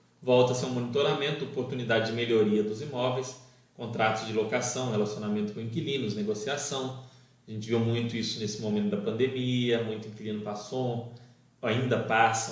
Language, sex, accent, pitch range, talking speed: Portuguese, male, Brazilian, 110-140 Hz, 140 wpm